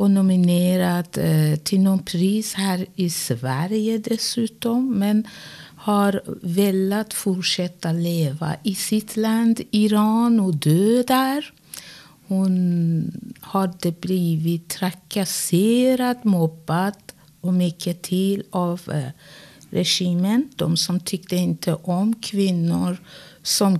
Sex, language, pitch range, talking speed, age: female, Swedish, 160-200 Hz, 100 wpm, 50-69